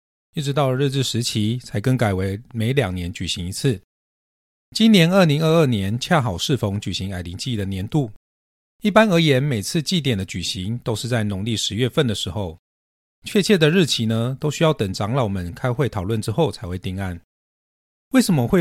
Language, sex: Chinese, male